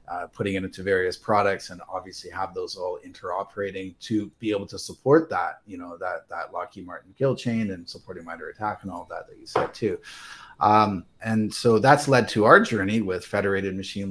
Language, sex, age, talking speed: English, male, 30-49, 205 wpm